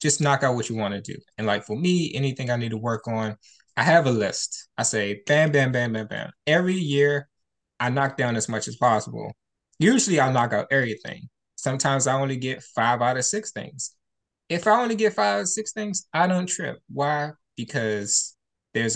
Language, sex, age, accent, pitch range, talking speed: English, male, 20-39, American, 110-145 Hz, 210 wpm